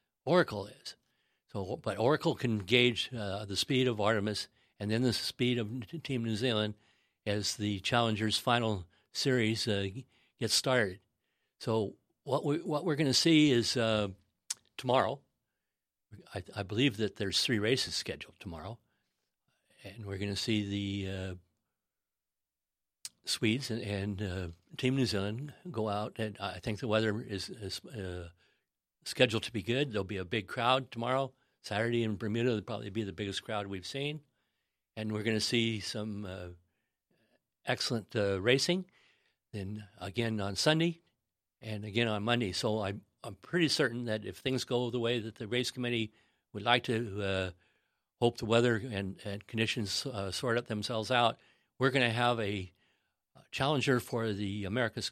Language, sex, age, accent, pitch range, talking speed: English, male, 60-79, American, 100-120 Hz, 165 wpm